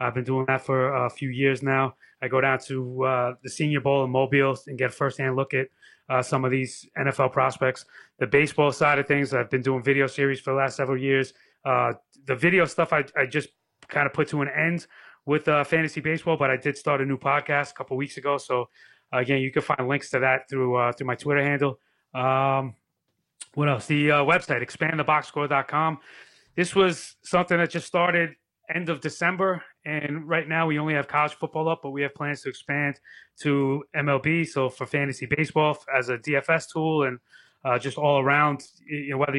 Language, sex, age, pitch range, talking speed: English, male, 30-49, 135-155 Hz, 210 wpm